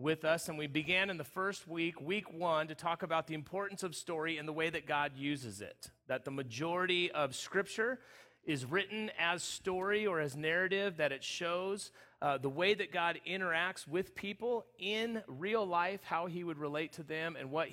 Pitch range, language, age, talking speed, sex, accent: 145-180 Hz, English, 40-59, 200 wpm, male, American